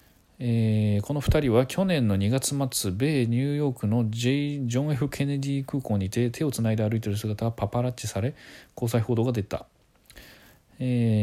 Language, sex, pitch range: Japanese, male, 105-130 Hz